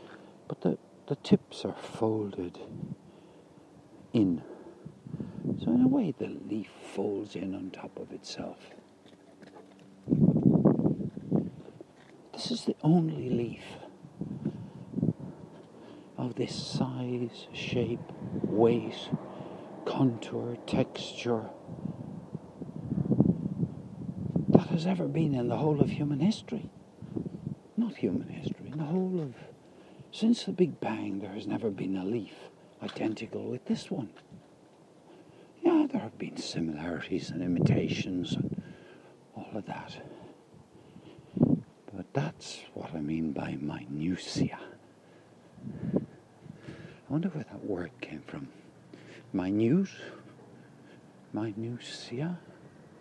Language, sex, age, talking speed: English, male, 60-79, 100 wpm